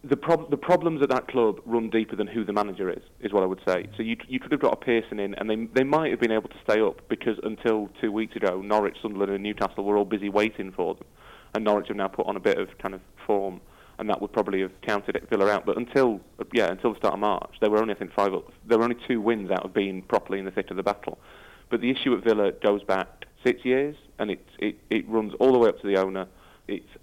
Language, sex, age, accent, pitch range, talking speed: English, male, 30-49, British, 100-115 Hz, 280 wpm